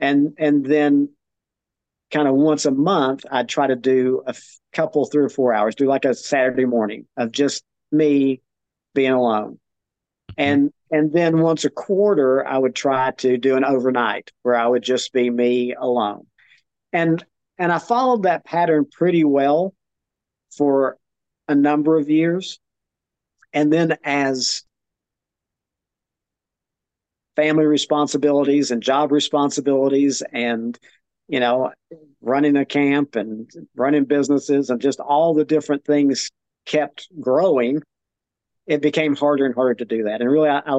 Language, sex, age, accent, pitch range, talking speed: English, male, 50-69, American, 130-155 Hz, 145 wpm